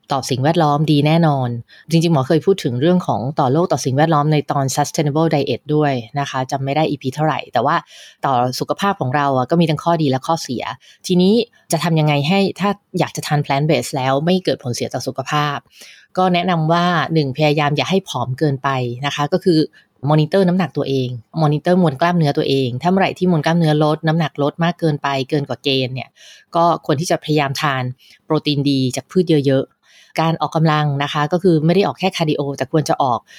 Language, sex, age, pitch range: English, female, 20-39, 140-165 Hz